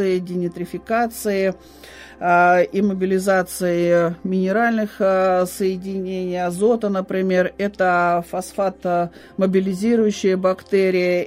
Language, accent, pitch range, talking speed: Russian, native, 175-195 Hz, 55 wpm